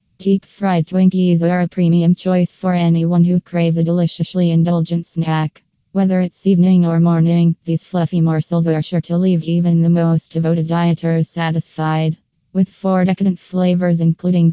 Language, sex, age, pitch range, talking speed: English, female, 20-39, 165-180 Hz, 155 wpm